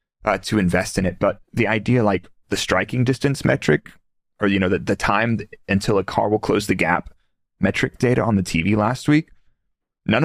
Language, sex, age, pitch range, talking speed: Greek, male, 30-49, 100-125 Hz, 205 wpm